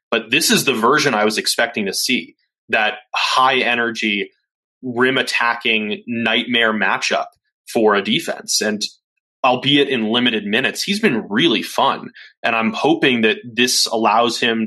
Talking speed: 140 wpm